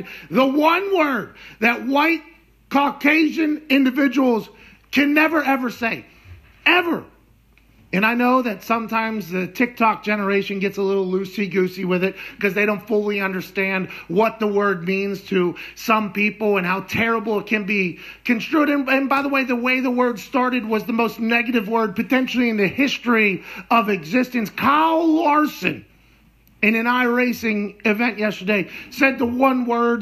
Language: English